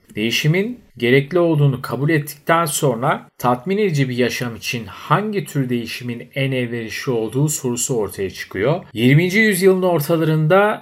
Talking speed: 130 wpm